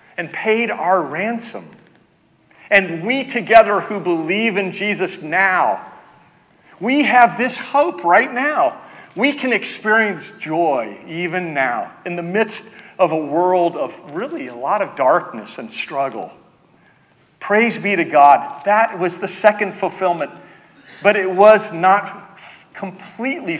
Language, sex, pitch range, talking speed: English, male, 180-225 Hz, 135 wpm